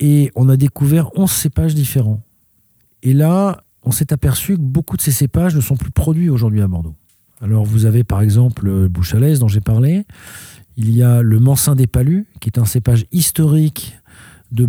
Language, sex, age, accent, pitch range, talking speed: French, male, 40-59, French, 110-150 Hz, 190 wpm